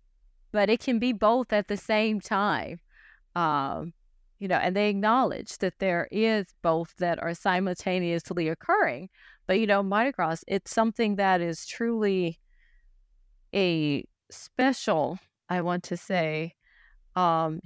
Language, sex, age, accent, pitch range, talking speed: English, female, 30-49, American, 165-210 Hz, 135 wpm